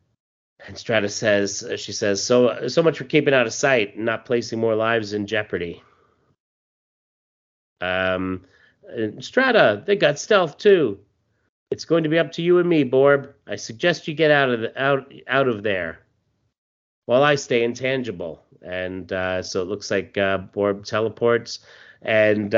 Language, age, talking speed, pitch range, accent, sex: English, 30-49, 165 wpm, 105-150 Hz, American, male